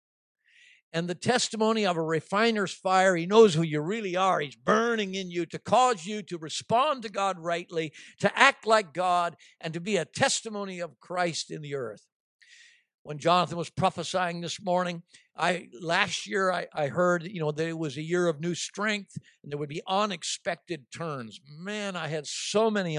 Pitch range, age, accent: 160-200 Hz, 60-79, American